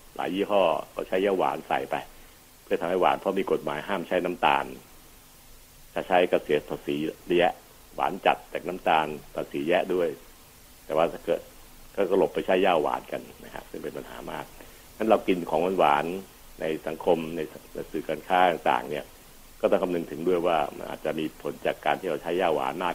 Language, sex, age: Thai, male, 60-79